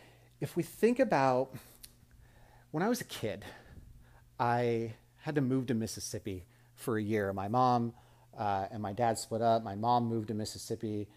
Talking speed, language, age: 165 wpm, English, 30-49